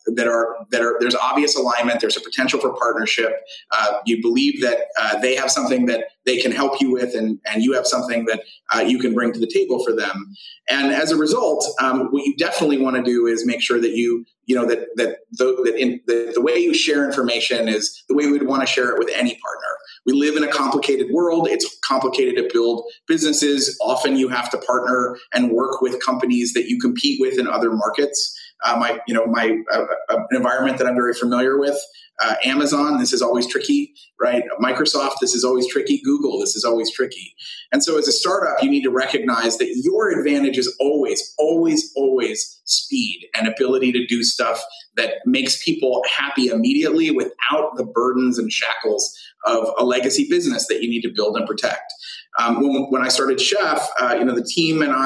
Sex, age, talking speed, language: male, 30-49, 210 wpm, English